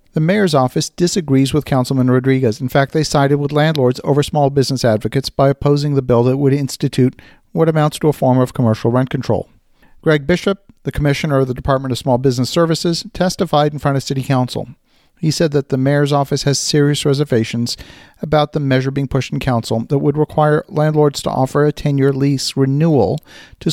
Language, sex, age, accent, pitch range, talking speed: English, male, 50-69, American, 130-155 Hz, 195 wpm